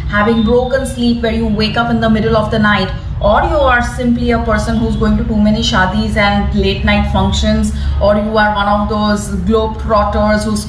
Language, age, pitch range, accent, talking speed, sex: English, 30-49, 205-255 Hz, Indian, 215 wpm, female